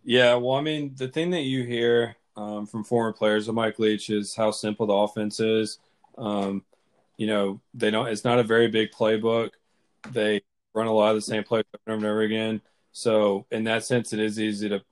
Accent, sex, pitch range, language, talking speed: American, male, 100-110 Hz, English, 215 wpm